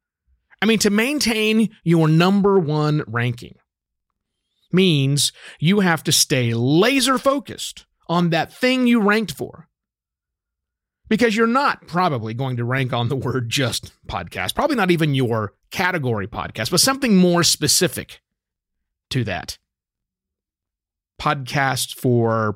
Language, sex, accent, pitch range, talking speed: English, male, American, 120-190 Hz, 125 wpm